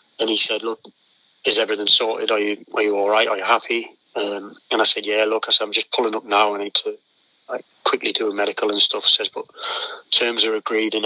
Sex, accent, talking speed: male, British, 250 wpm